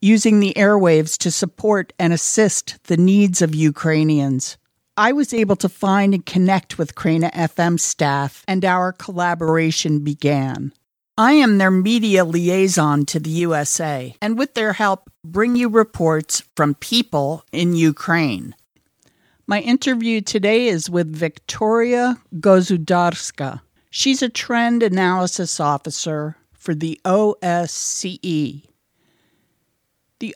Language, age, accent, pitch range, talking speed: English, 50-69, American, 160-205 Hz, 120 wpm